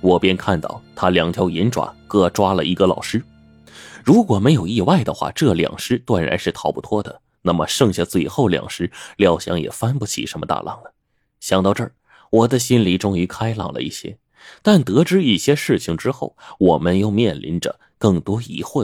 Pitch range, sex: 95-135 Hz, male